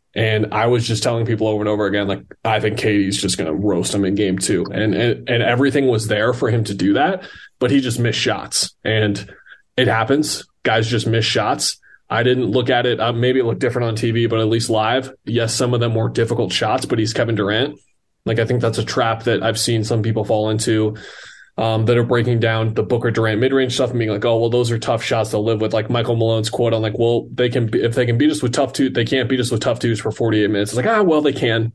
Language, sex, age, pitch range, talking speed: English, male, 20-39, 110-125 Hz, 270 wpm